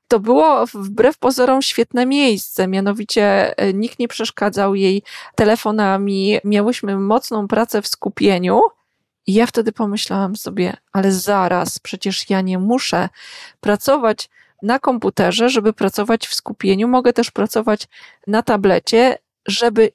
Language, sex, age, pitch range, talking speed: Polish, female, 20-39, 200-240 Hz, 125 wpm